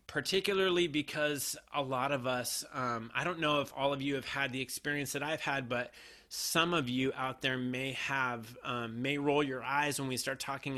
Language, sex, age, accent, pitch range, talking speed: English, male, 30-49, American, 125-150 Hz, 210 wpm